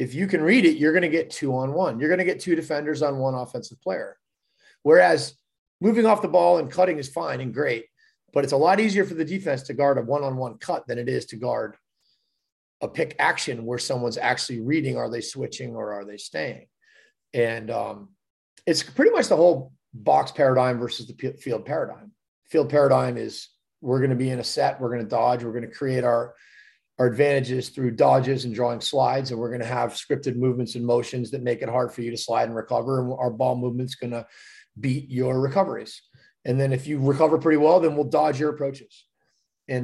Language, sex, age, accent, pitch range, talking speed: English, male, 30-49, American, 125-155 Hz, 215 wpm